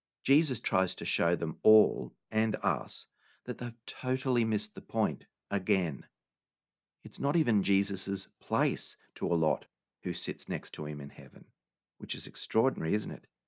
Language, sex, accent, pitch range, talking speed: English, male, Australian, 95-115 Hz, 150 wpm